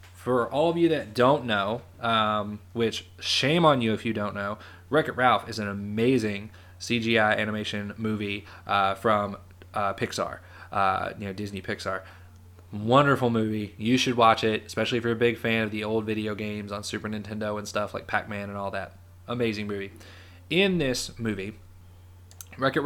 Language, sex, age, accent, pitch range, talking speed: English, male, 20-39, American, 95-115 Hz, 175 wpm